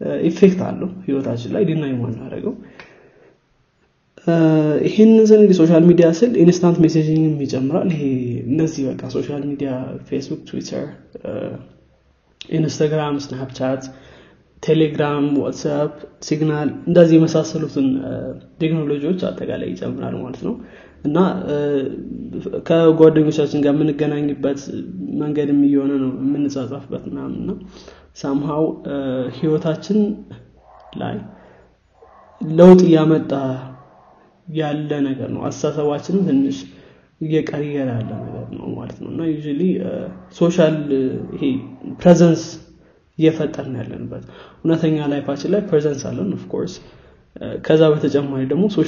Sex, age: male, 20-39